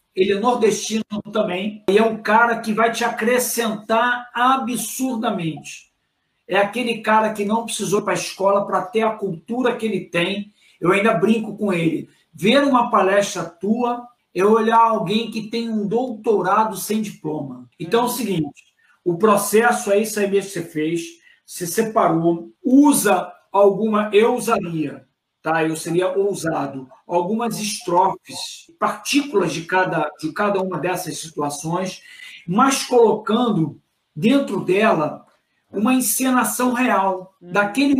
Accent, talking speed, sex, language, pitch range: Brazilian, 135 wpm, male, Portuguese, 185-235 Hz